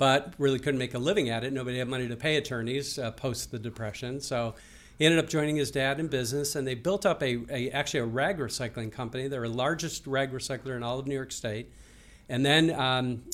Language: English